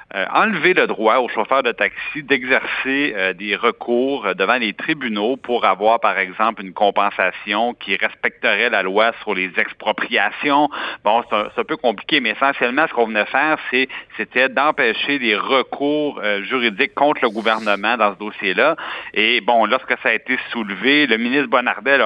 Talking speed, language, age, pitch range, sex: 175 wpm, French, 60-79, 105-135 Hz, male